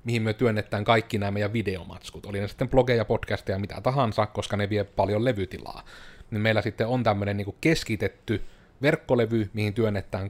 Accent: native